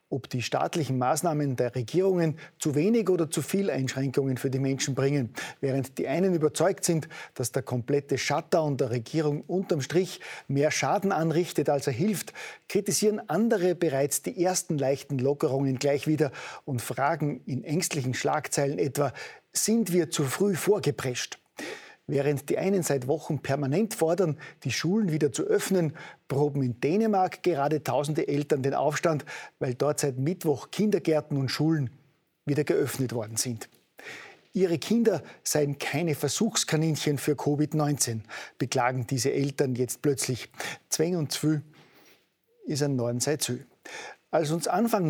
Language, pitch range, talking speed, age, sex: German, 135-170 Hz, 145 wpm, 40-59, male